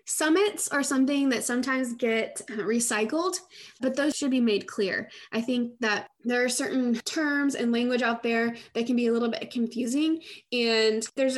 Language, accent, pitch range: English, American, 220-280 Hz